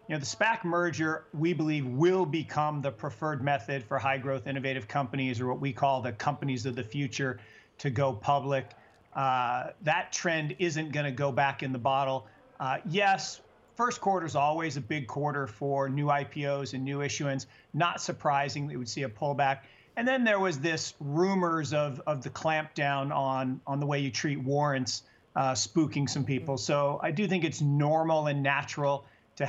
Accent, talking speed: American, 190 wpm